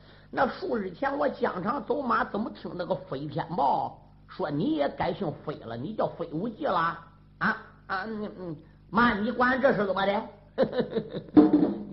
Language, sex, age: Chinese, male, 50-69